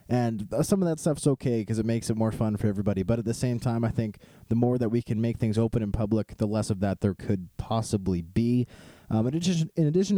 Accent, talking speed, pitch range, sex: American, 255 wpm, 105-125 Hz, male